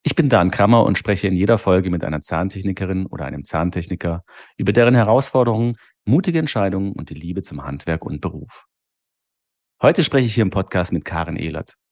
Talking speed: 180 wpm